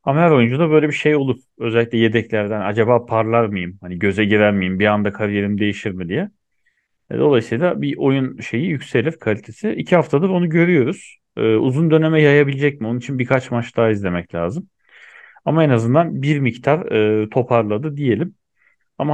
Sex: male